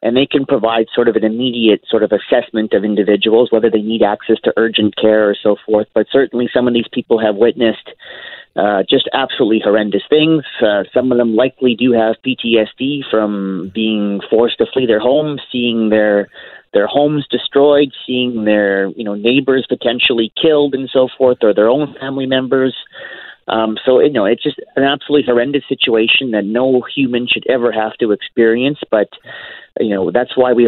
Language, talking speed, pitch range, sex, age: English, 185 wpm, 110-135 Hz, male, 30-49